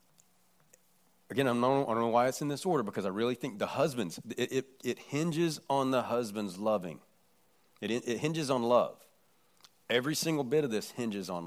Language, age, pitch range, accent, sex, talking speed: English, 40-59, 95-125 Hz, American, male, 195 wpm